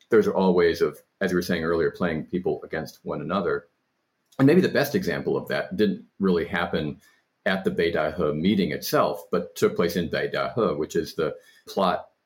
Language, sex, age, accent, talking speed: English, male, 40-59, American, 195 wpm